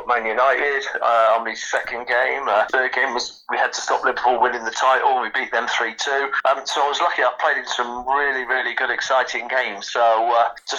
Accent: British